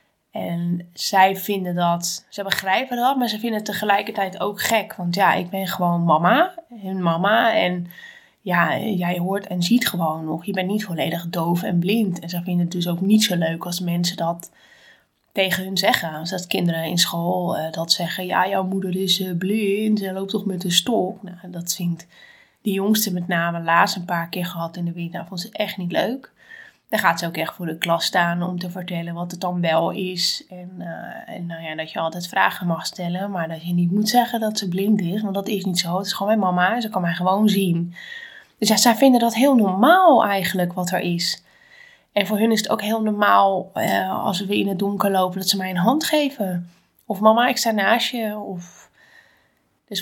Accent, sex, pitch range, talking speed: Dutch, female, 175-215 Hz, 225 wpm